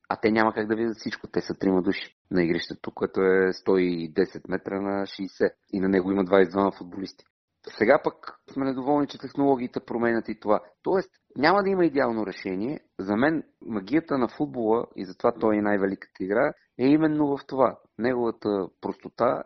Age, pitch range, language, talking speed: 40-59, 95-120 Hz, Bulgarian, 175 wpm